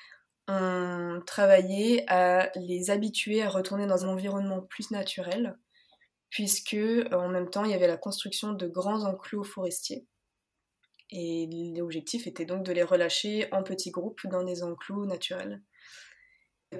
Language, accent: French, French